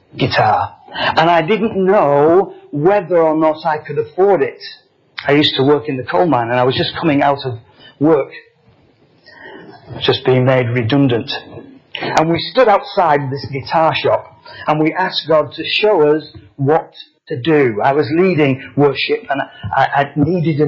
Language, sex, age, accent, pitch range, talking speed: English, male, 50-69, British, 140-175 Hz, 170 wpm